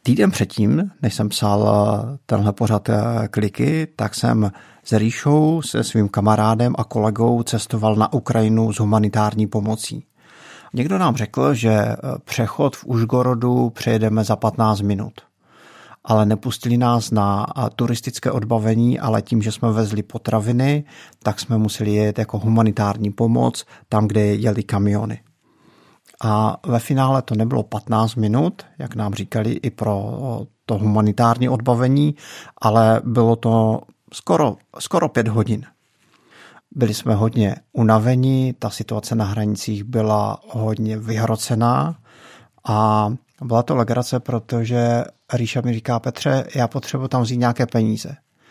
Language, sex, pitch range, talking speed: Czech, male, 110-125 Hz, 130 wpm